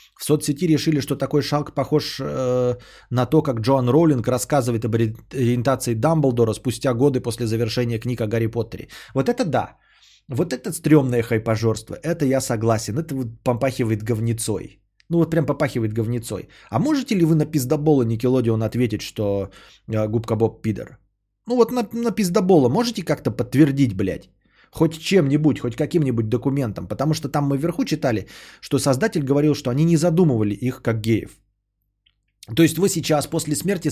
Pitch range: 115-165 Hz